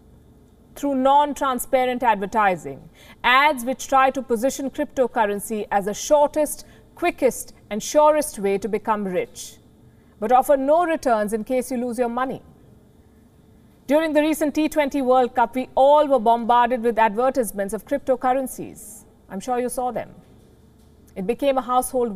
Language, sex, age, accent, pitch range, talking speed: English, female, 50-69, Indian, 240-285 Hz, 140 wpm